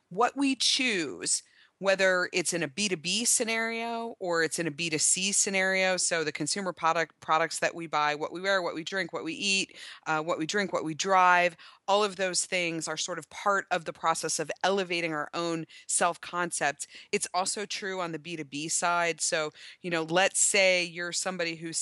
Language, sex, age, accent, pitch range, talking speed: English, female, 30-49, American, 155-195 Hz, 210 wpm